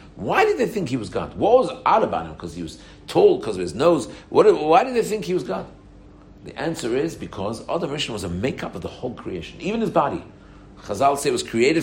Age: 60-79